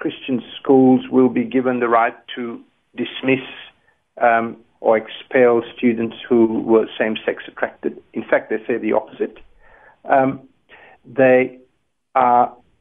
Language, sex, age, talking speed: English, male, 60-79, 120 wpm